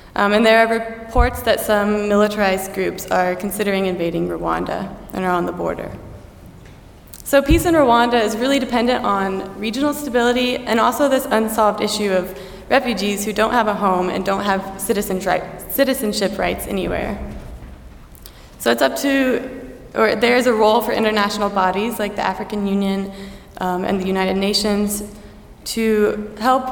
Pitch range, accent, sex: 195-235 Hz, American, female